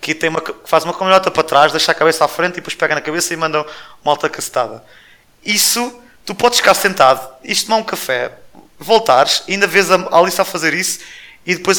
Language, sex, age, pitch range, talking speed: English, male, 20-39, 140-175 Hz, 225 wpm